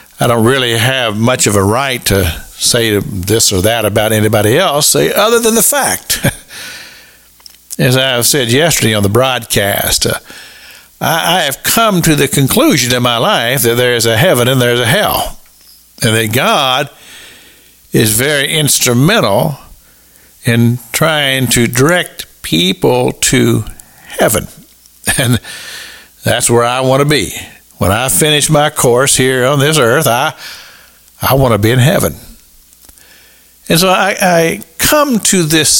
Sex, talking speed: male, 155 wpm